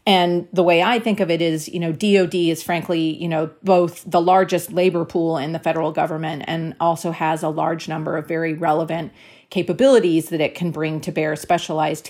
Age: 40-59